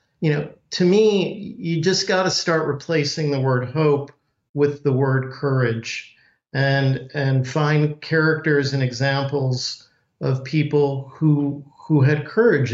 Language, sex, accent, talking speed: English, male, American, 130 wpm